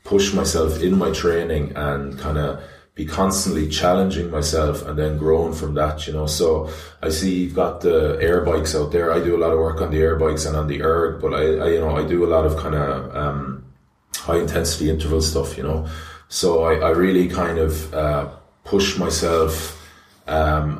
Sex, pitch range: male, 75-85 Hz